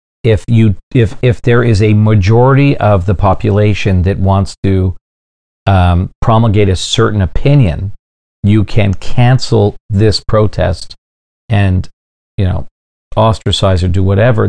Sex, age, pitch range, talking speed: male, 40-59, 90-110 Hz, 130 wpm